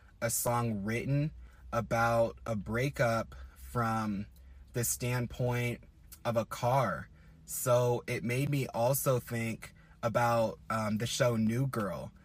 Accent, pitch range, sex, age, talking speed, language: American, 110-125 Hz, male, 20-39, 120 wpm, English